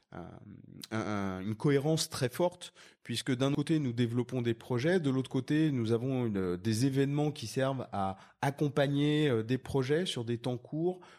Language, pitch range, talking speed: French, 115-150 Hz, 160 wpm